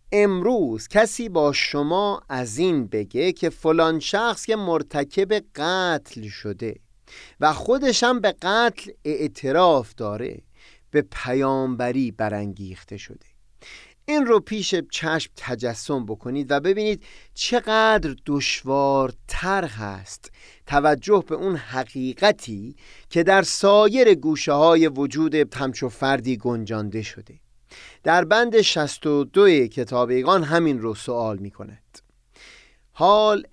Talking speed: 110 wpm